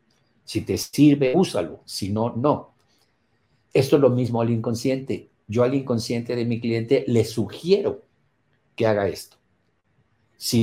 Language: Spanish